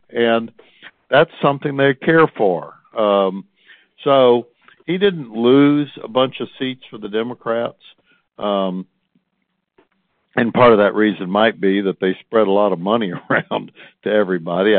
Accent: American